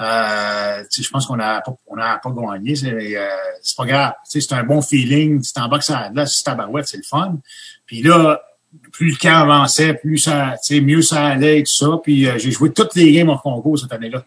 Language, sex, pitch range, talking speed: French, male, 125-150 Hz, 230 wpm